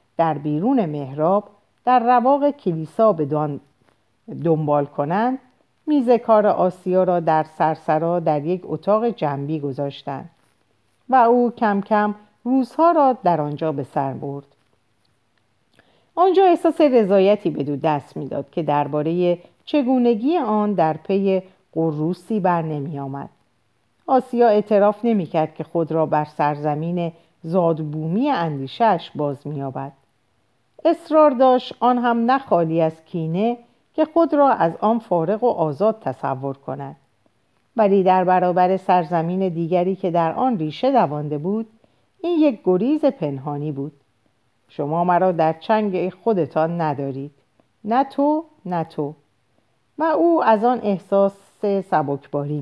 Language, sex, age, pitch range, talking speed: Persian, female, 50-69, 150-230 Hz, 125 wpm